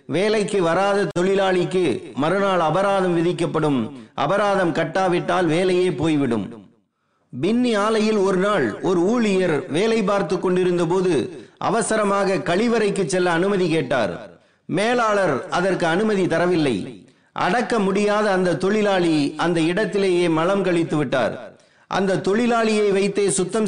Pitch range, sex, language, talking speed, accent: 175-210 Hz, male, Tamil, 75 wpm, native